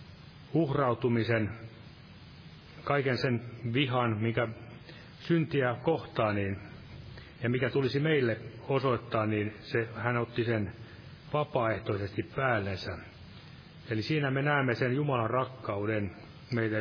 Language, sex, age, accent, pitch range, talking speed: Finnish, male, 30-49, native, 110-135 Hz, 100 wpm